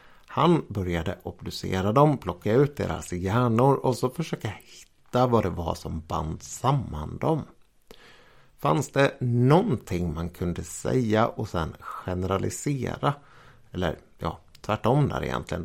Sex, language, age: male, Swedish, 60-79